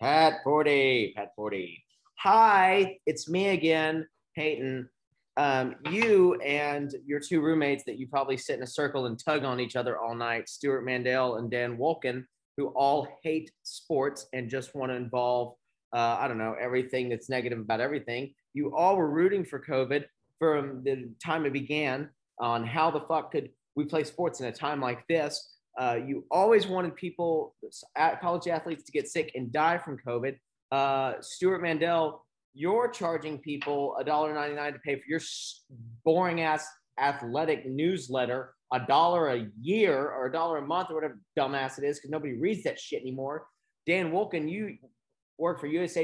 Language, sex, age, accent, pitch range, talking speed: English, male, 30-49, American, 130-170 Hz, 175 wpm